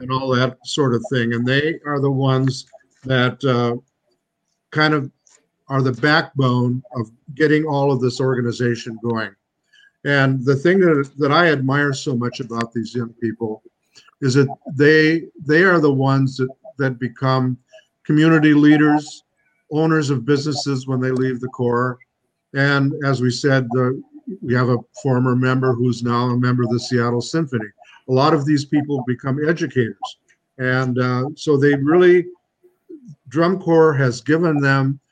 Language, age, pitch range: English, 50-69, 120-150 Hz